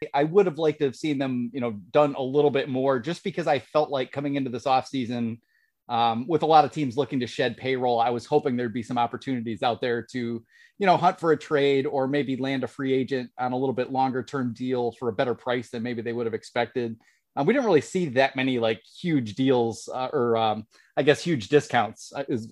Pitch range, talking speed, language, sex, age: 120-150 Hz, 240 wpm, English, male, 30-49